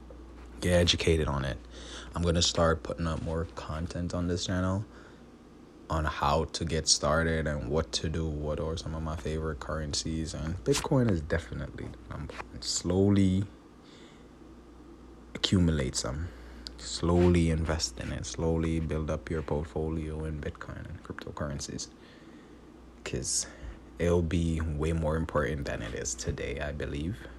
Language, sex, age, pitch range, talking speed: English, male, 20-39, 75-85 Hz, 140 wpm